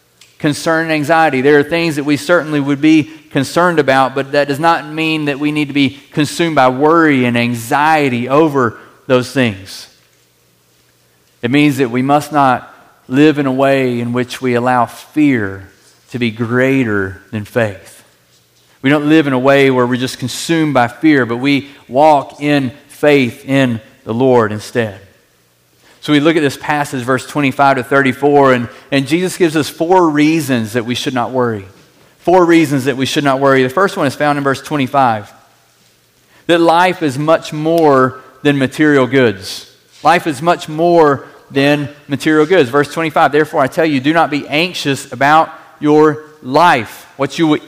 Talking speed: 175 wpm